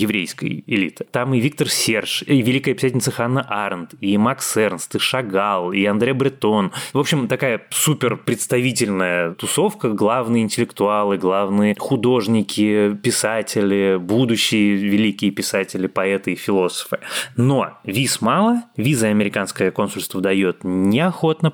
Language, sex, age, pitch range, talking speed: Russian, male, 20-39, 100-135 Hz, 125 wpm